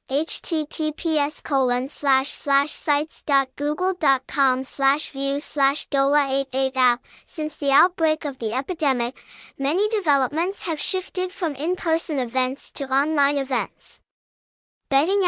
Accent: American